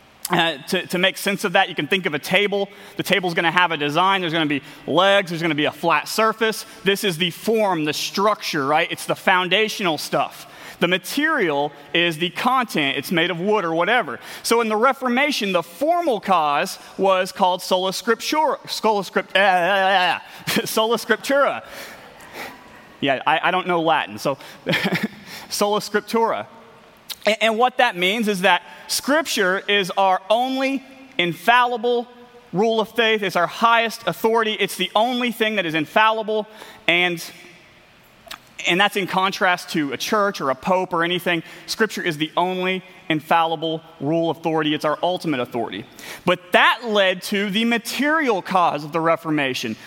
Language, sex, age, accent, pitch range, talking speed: English, male, 30-49, American, 170-220 Hz, 160 wpm